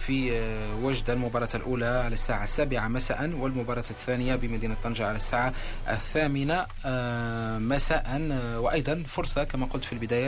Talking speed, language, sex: 130 wpm, Arabic, male